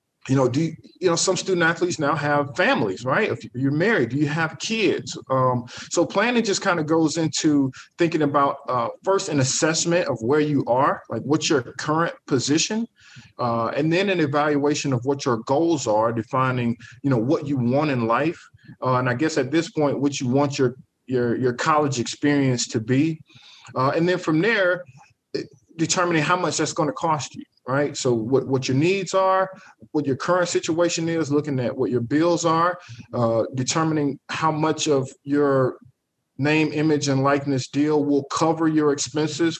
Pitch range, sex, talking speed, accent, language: 135-165 Hz, male, 190 wpm, American, English